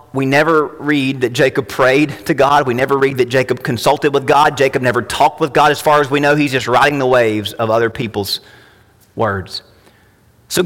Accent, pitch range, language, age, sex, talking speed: American, 120-190 Hz, English, 40-59, male, 205 wpm